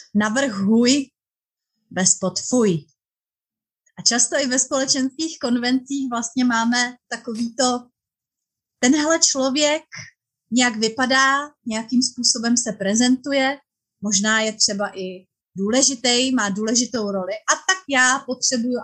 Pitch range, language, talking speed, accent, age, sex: 215-275 Hz, Czech, 105 wpm, native, 30-49, female